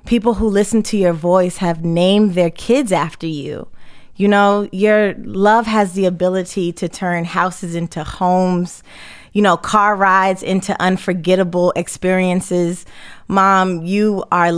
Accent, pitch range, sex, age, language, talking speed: American, 180-215 Hz, female, 20-39, English, 140 wpm